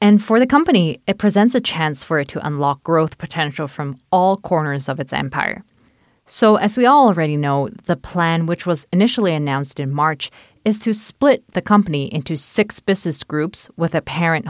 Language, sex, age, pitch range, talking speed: English, female, 20-39, 150-205 Hz, 190 wpm